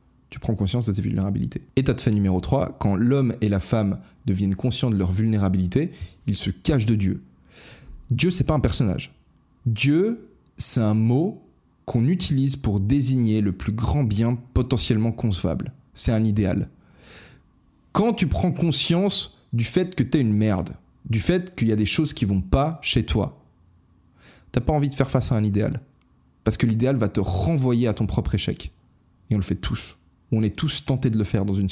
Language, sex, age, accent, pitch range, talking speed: French, male, 20-39, French, 95-130 Hz, 200 wpm